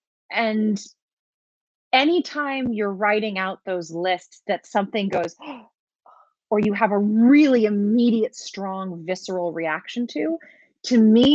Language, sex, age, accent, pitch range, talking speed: English, female, 30-49, American, 190-245 Hz, 115 wpm